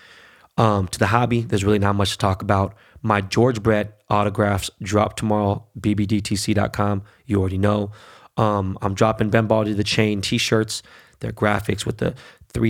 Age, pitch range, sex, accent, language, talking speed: 20-39, 100-110 Hz, male, American, English, 155 wpm